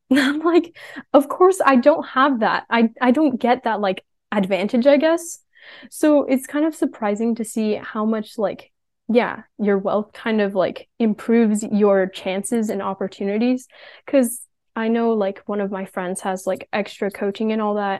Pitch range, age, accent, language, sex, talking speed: 200-255 Hz, 10-29, American, English, female, 175 wpm